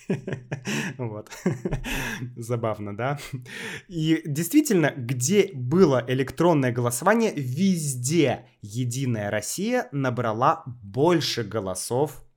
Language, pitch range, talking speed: Russian, 120-160 Hz, 75 wpm